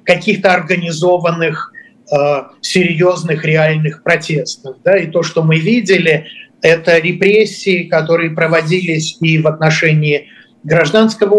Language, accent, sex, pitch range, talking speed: Russian, native, male, 160-190 Hz, 100 wpm